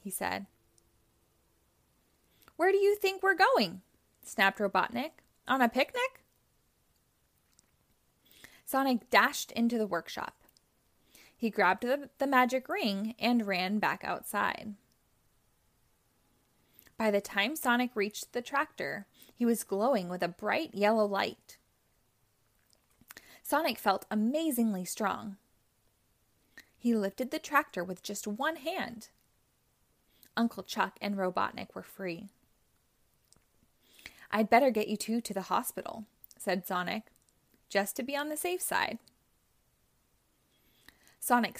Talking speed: 115 wpm